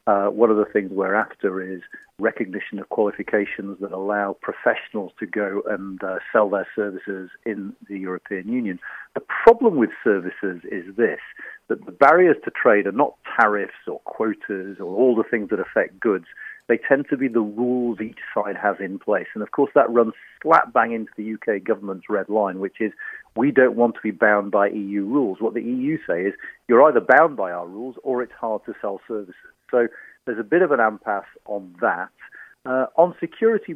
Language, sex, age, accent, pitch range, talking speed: English, male, 40-59, British, 105-160 Hz, 200 wpm